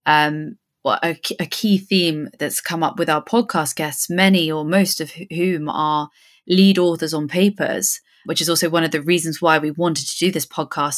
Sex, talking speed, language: female, 200 wpm, English